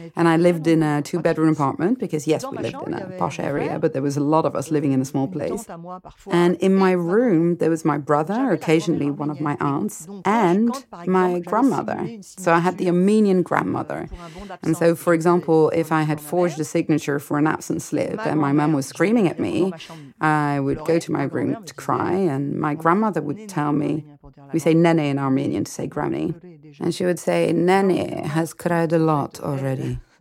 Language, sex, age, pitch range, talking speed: French, female, 30-49, 155-190 Hz, 205 wpm